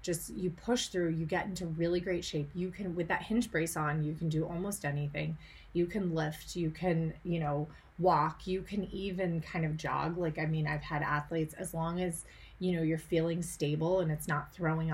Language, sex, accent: English, female, American